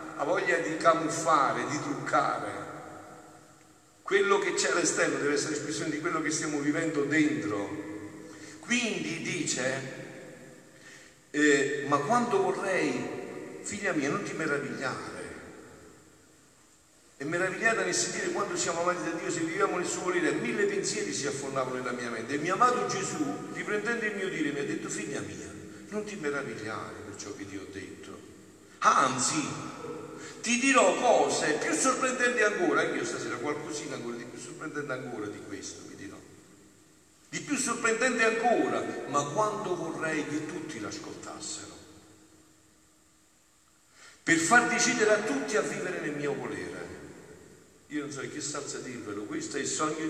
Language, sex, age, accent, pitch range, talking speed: Italian, male, 50-69, native, 150-240 Hz, 145 wpm